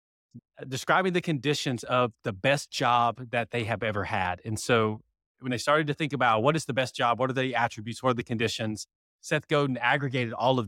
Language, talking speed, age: English, 215 wpm, 30-49